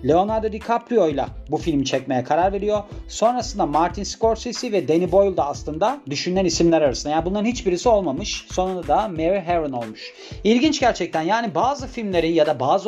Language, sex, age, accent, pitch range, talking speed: Turkish, male, 40-59, native, 155-205 Hz, 165 wpm